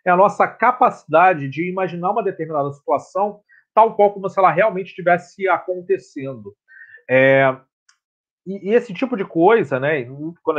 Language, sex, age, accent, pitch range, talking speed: Portuguese, male, 40-59, Brazilian, 160-210 Hz, 140 wpm